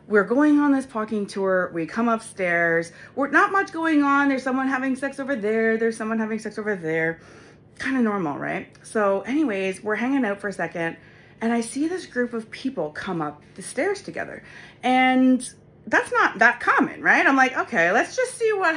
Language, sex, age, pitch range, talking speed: English, female, 30-49, 180-265 Hz, 200 wpm